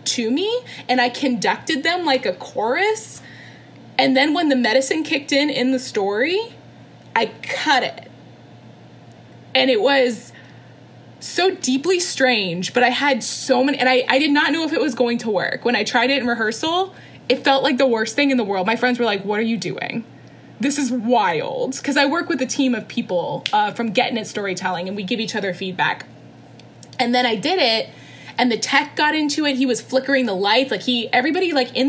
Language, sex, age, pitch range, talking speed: English, female, 10-29, 225-285 Hz, 210 wpm